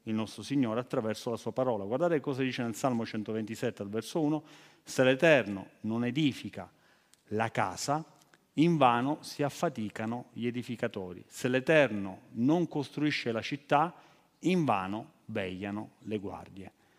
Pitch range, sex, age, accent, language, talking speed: 115-160 Hz, male, 40-59, native, Italian, 130 wpm